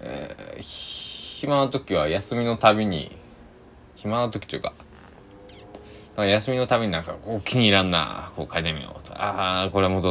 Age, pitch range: 20-39, 90-120 Hz